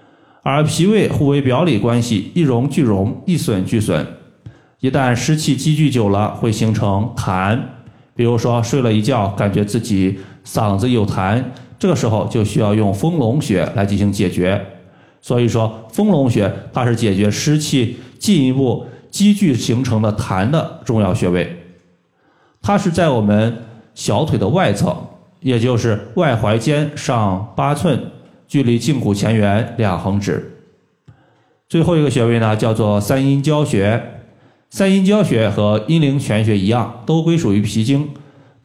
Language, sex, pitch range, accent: Chinese, male, 105-140 Hz, native